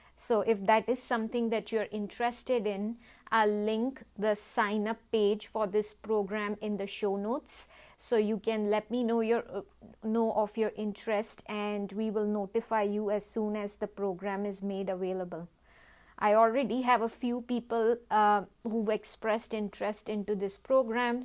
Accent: Indian